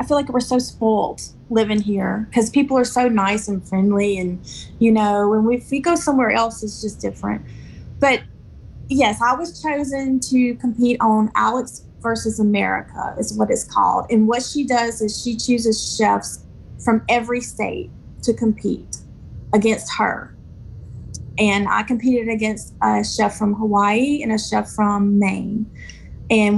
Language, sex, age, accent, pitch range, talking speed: English, female, 30-49, American, 210-245 Hz, 160 wpm